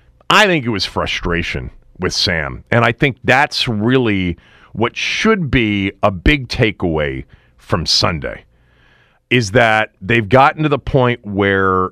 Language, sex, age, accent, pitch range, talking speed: English, male, 40-59, American, 95-130 Hz, 140 wpm